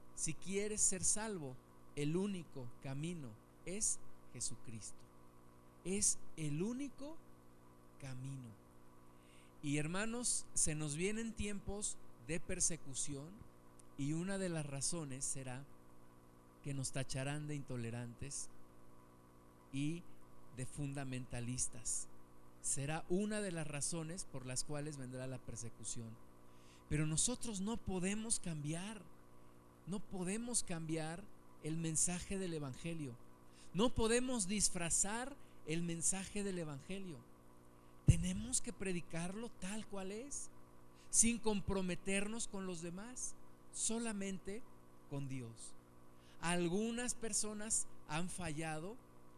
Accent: Mexican